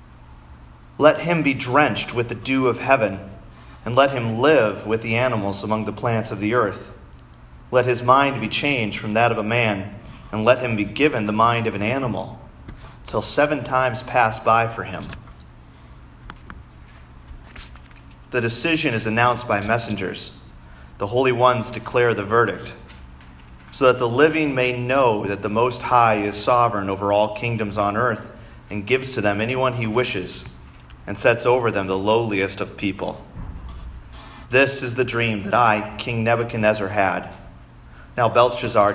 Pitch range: 95-120 Hz